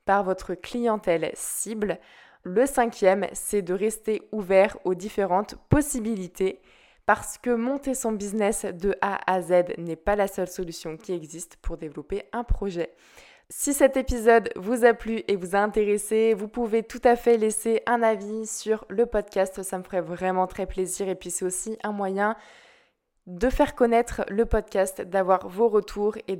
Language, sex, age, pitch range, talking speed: French, female, 20-39, 185-220 Hz, 170 wpm